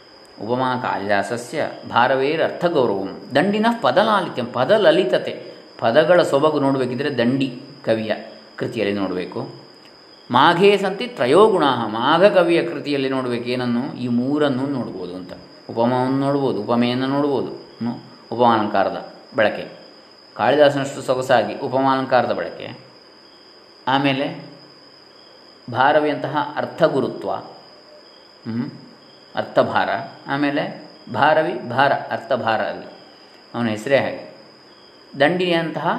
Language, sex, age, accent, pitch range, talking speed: Kannada, male, 20-39, native, 120-145 Hz, 85 wpm